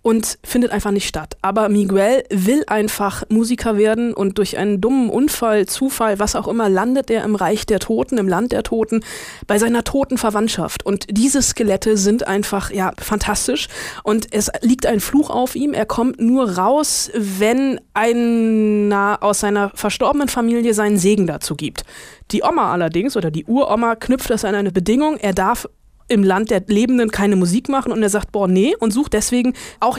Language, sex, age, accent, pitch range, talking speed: German, female, 20-39, German, 205-245 Hz, 180 wpm